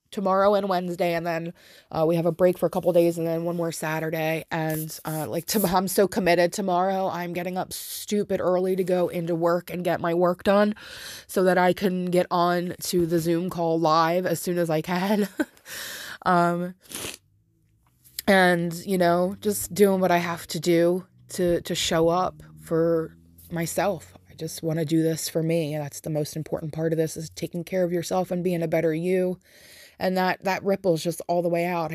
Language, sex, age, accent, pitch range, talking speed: English, female, 20-39, American, 165-185 Hz, 205 wpm